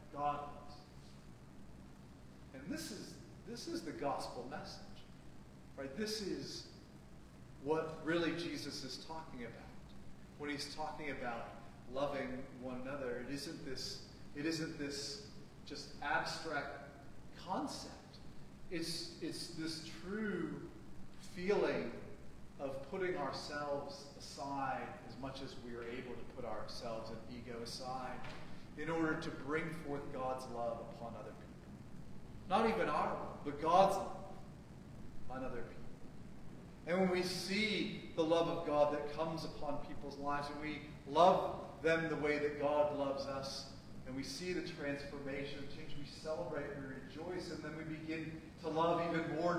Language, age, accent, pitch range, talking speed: English, 40-59, American, 135-165 Hz, 140 wpm